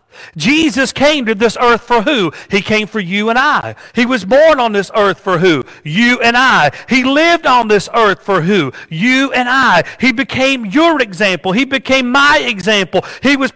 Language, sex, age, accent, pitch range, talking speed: English, male, 40-59, American, 225-295 Hz, 195 wpm